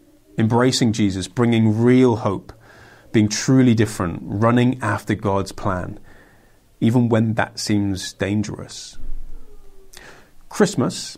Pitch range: 100-125 Hz